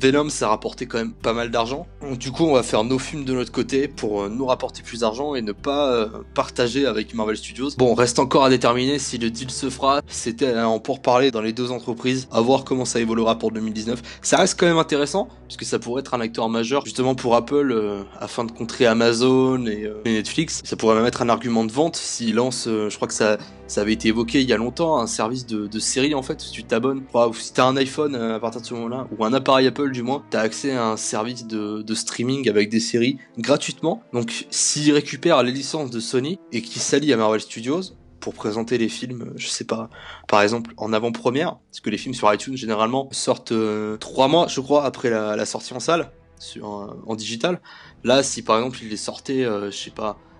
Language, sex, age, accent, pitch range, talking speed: French, male, 20-39, French, 110-135 Hz, 245 wpm